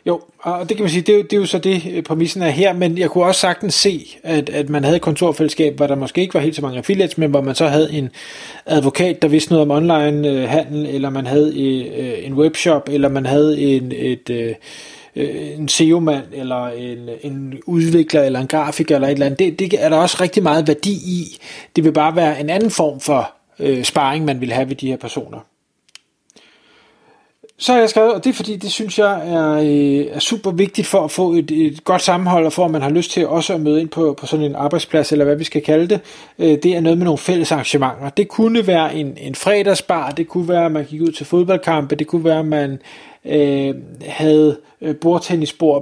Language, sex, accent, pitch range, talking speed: Danish, male, native, 145-180 Hz, 225 wpm